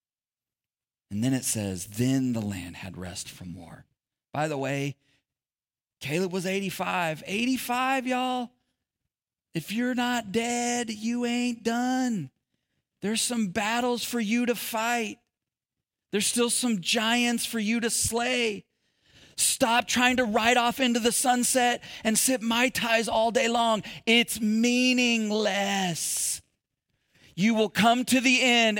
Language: English